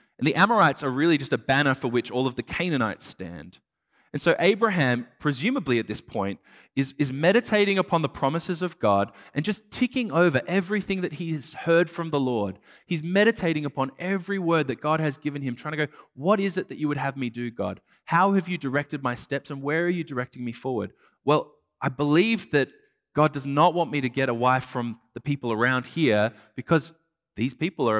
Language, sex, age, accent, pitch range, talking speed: English, male, 20-39, Australian, 120-165 Hz, 215 wpm